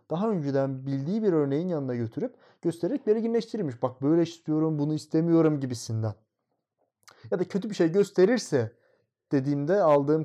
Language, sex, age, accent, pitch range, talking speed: Turkish, male, 30-49, native, 125-185 Hz, 135 wpm